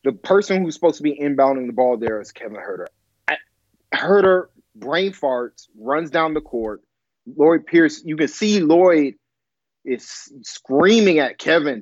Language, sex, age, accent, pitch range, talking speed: English, male, 30-49, American, 120-155 Hz, 150 wpm